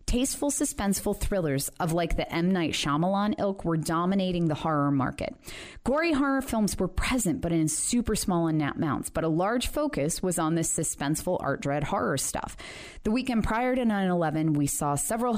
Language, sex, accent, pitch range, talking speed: English, female, American, 155-210 Hz, 180 wpm